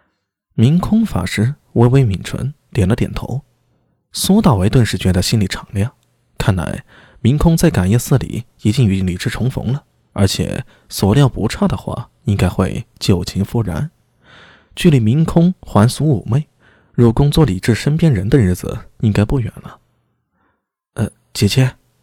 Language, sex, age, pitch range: Chinese, male, 20-39, 100-145 Hz